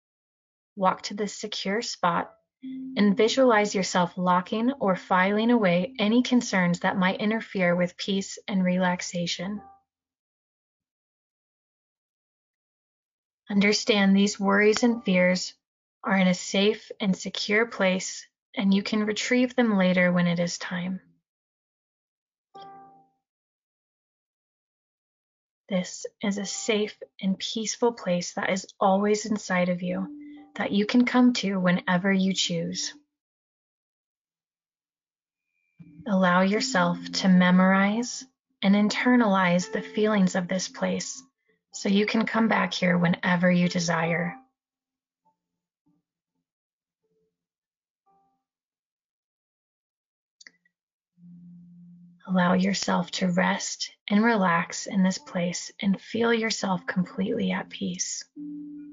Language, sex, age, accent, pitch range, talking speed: English, female, 30-49, American, 180-220 Hz, 100 wpm